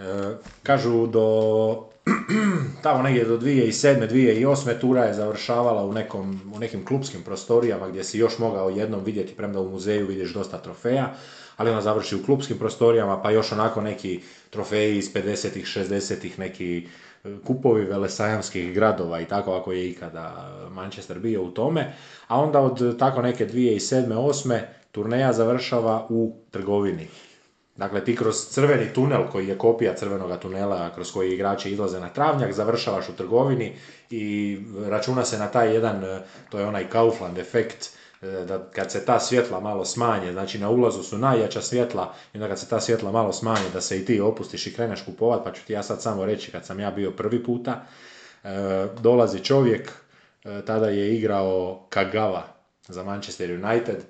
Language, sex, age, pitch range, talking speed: Croatian, male, 30-49, 95-115 Hz, 165 wpm